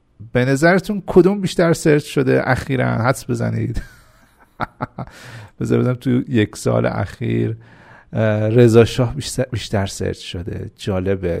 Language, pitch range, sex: Persian, 95-130 Hz, male